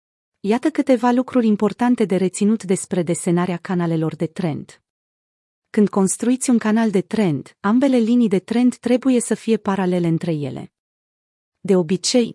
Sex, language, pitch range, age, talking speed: female, Romanian, 175-225 Hz, 30-49, 140 wpm